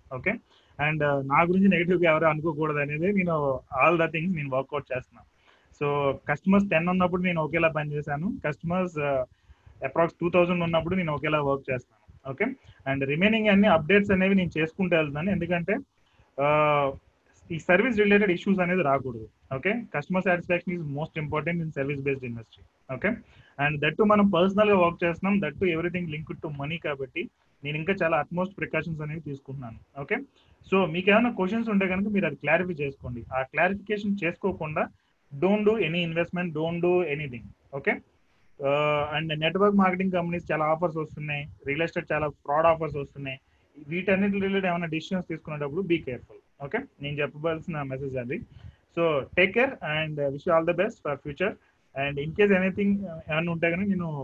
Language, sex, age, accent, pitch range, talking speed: Telugu, male, 30-49, native, 145-185 Hz, 155 wpm